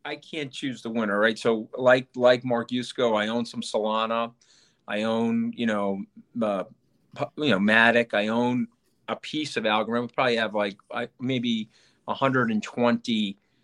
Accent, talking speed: American, 160 wpm